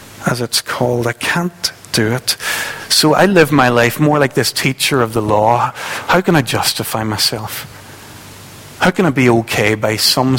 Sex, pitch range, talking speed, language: male, 110-130 Hz, 180 wpm, English